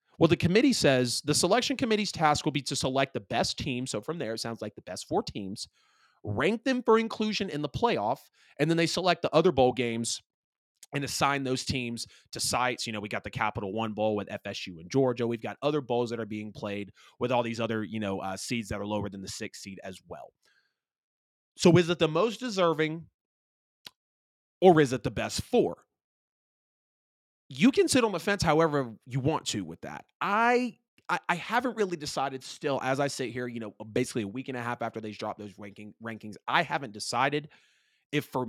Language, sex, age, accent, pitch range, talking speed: English, male, 30-49, American, 115-165 Hz, 215 wpm